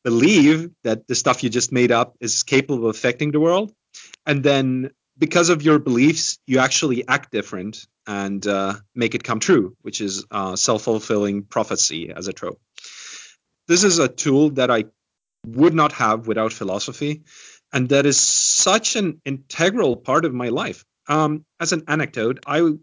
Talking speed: 170 wpm